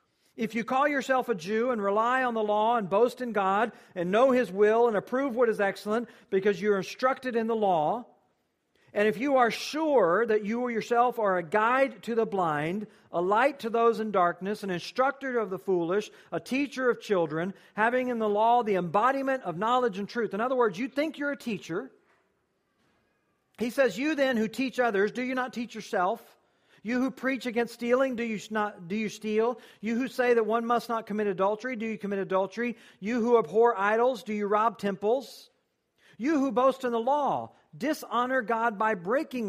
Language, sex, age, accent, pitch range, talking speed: English, male, 50-69, American, 200-245 Hz, 200 wpm